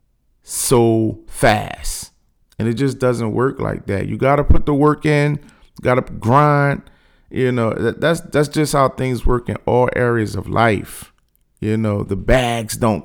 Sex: male